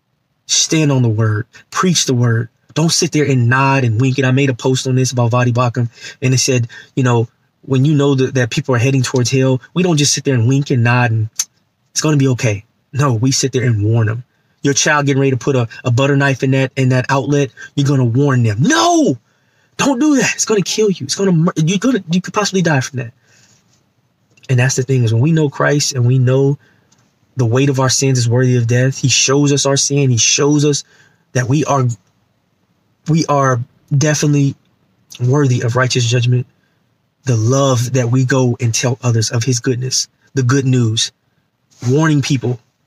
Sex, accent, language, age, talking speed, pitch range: male, American, English, 20-39, 220 wpm, 120-140 Hz